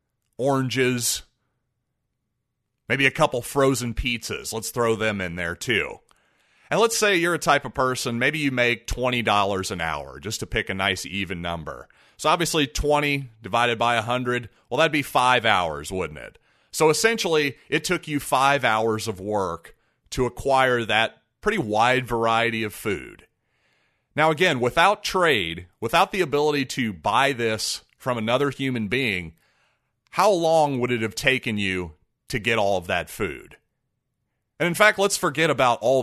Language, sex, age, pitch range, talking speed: English, male, 30-49, 110-150 Hz, 160 wpm